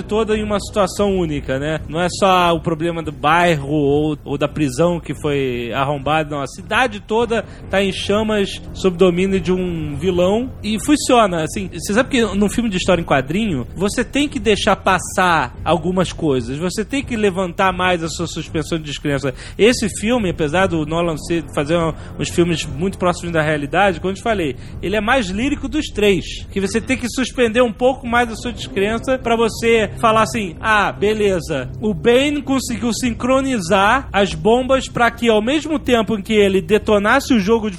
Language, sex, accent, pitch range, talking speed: Portuguese, male, Brazilian, 170-240 Hz, 190 wpm